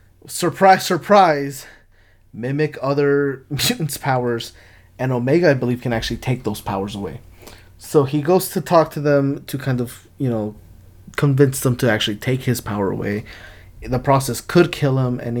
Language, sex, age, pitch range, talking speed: English, male, 20-39, 105-135 Hz, 165 wpm